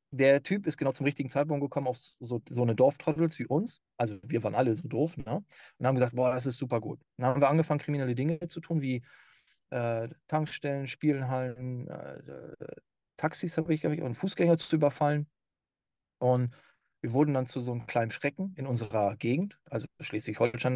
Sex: male